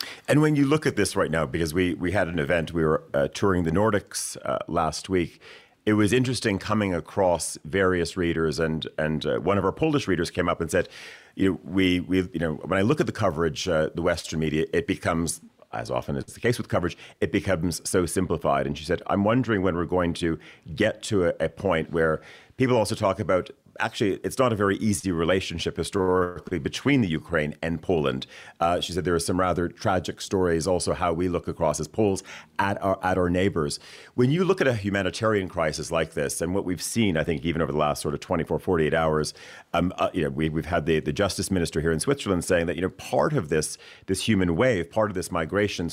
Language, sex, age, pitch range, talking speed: English, male, 40-59, 80-100 Hz, 230 wpm